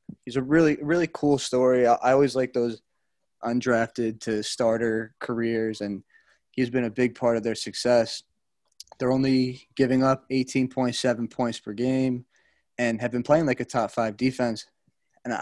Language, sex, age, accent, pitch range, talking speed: English, male, 20-39, American, 120-135 Hz, 155 wpm